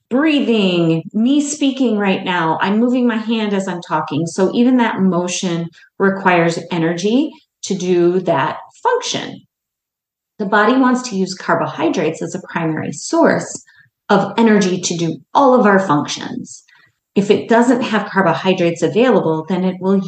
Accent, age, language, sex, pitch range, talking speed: American, 30-49, English, female, 170-240 Hz, 145 wpm